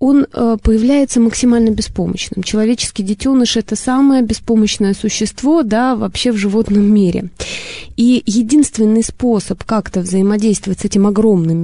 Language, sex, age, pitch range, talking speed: Russian, female, 20-39, 200-250 Hz, 115 wpm